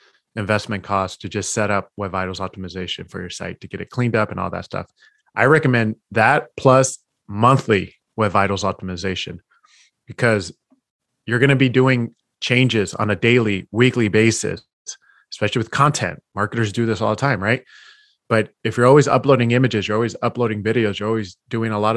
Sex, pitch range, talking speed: male, 100-120 Hz, 180 wpm